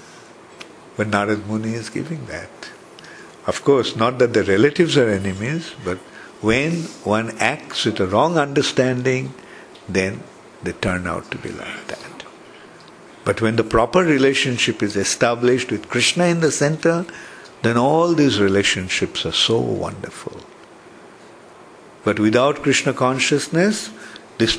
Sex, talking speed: male, 130 wpm